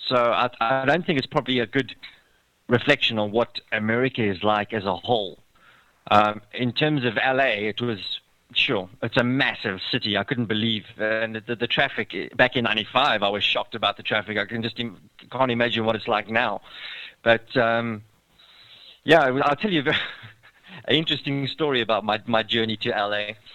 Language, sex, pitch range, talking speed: English, male, 115-135 Hz, 190 wpm